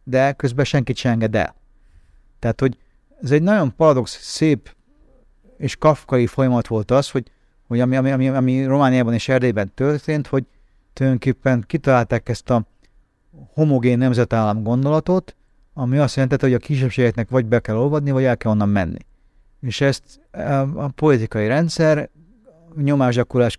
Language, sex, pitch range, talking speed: Hungarian, male, 115-150 Hz, 140 wpm